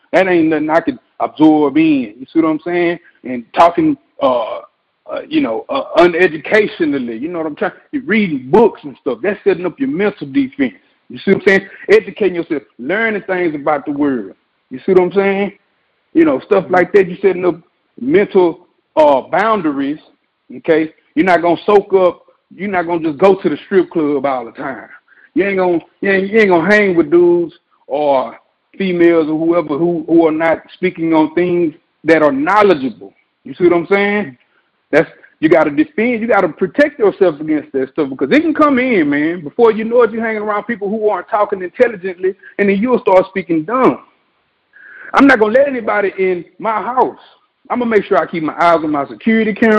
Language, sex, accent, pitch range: English, male, American, 165-230 Hz